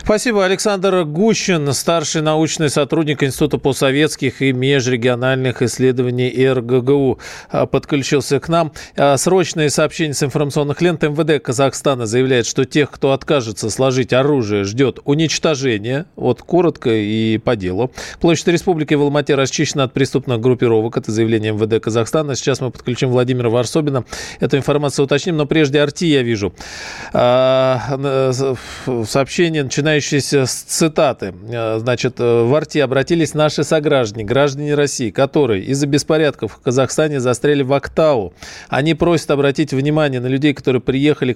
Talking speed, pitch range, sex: 130 wpm, 125-155 Hz, male